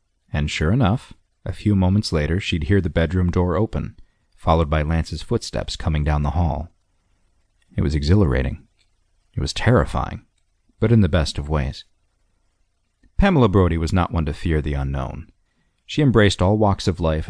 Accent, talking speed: American, 165 wpm